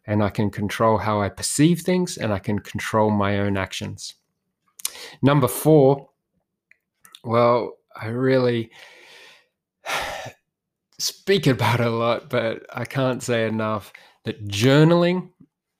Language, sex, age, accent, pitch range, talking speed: English, male, 20-39, Australian, 105-125 Hz, 120 wpm